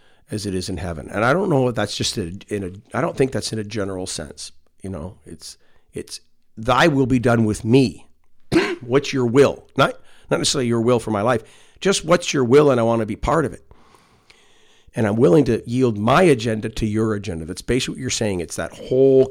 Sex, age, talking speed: male, 50-69, 230 wpm